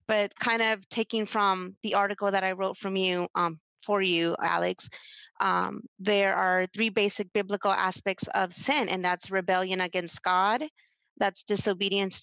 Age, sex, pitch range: 30-49, female, 180-205 Hz